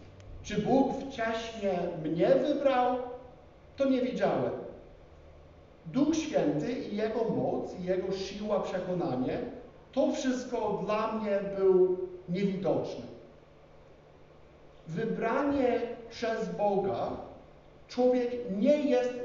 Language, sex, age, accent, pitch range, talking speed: Polish, male, 50-69, native, 190-260 Hz, 90 wpm